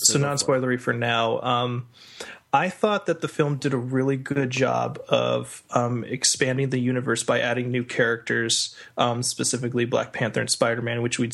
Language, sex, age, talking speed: English, male, 20-39, 170 wpm